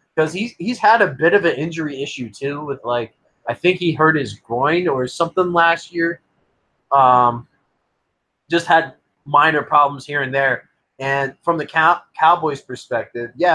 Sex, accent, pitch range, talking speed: male, American, 115-150 Hz, 170 wpm